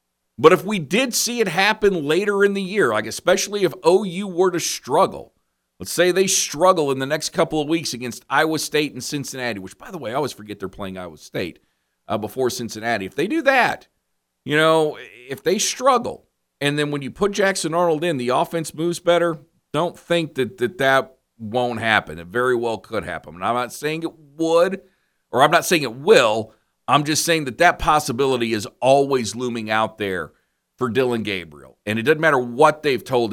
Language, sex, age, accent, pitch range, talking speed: English, male, 50-69, American, 110-160 Hz, 205 wpm